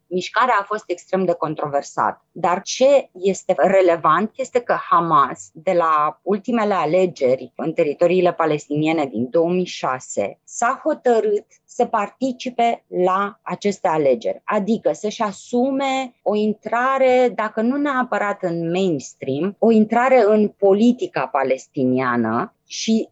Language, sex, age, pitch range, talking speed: Romanian, female, 20-39, 170-230 Hz, 115 wpm